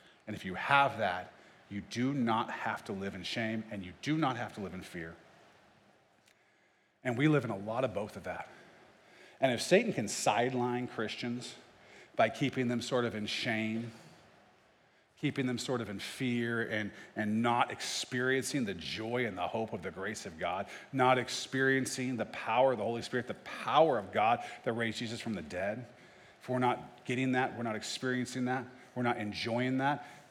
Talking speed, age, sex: 190 wpm, 40-59, male